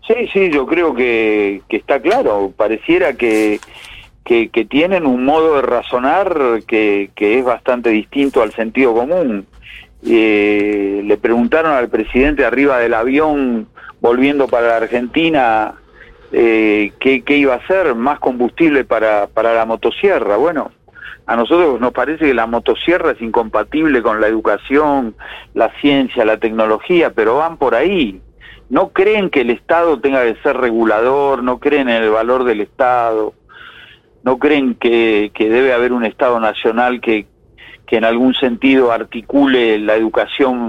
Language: Spanish